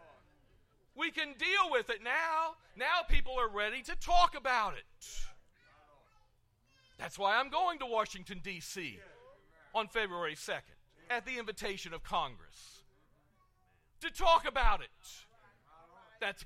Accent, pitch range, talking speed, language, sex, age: American, 200-260 Hz, 125 wpm, English, male, 40-59